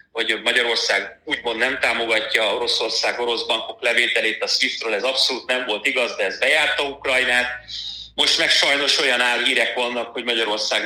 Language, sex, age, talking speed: Hungarian, male, 30-49, 150 wpm